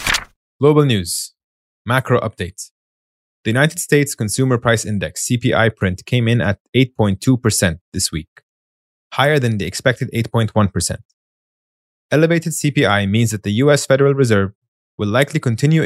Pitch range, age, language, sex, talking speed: 100-130 Hz, 20-39, English, male, 130 wpm